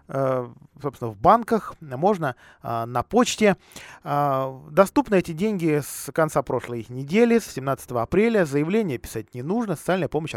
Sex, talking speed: male, 125 wpm